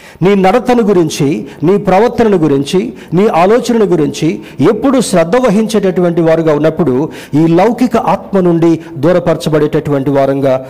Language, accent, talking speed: Telugu, native, 110 wpm